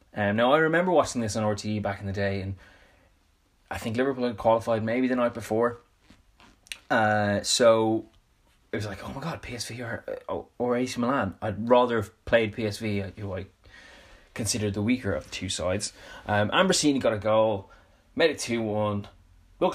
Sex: male